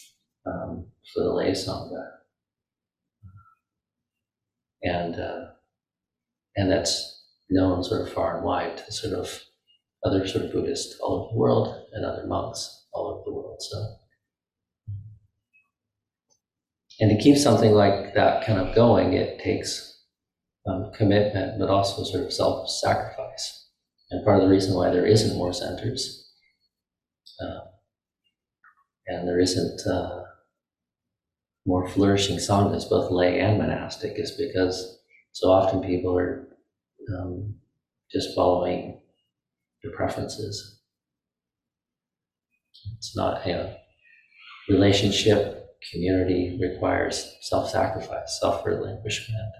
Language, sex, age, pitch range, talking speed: English, male, 40-59, 90-105 Hz, 115 wpm